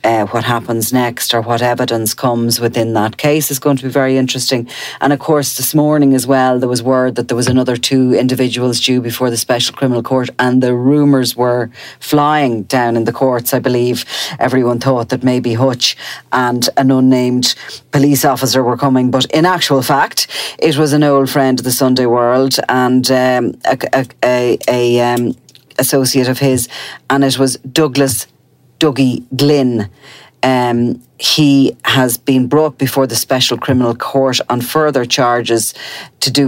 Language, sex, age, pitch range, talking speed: English, female, 40-59, 120-140 Hz, 175 wpm